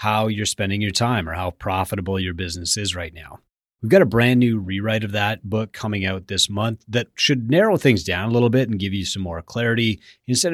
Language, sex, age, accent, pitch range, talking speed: English, male, 30-49, American, 95-120 Hz, 235 wpm